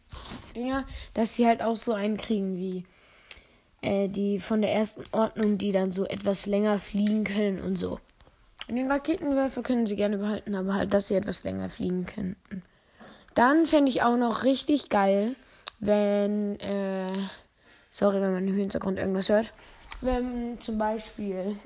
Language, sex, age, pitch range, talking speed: German, female, 20-39, 195-235 Hz, 160 wpm